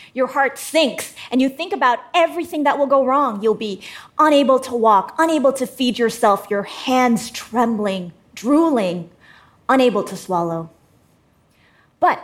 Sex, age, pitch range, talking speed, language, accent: female, 30-49, 210-275 Hz, 140 wpm, English, American